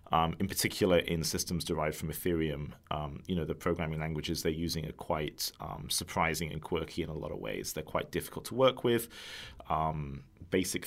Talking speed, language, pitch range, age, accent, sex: 195 wpm, English, 80-100 Hz, 30-49, British, male